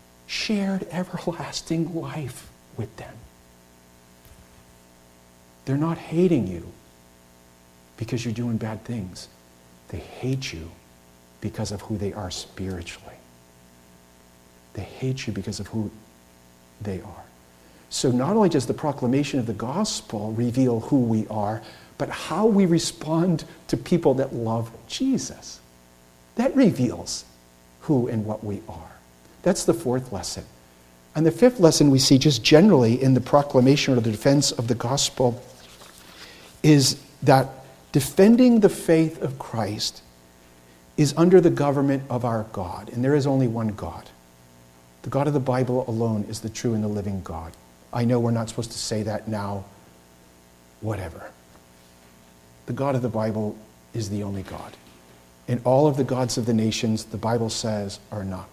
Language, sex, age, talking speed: English, male, 50-69, 150 wpm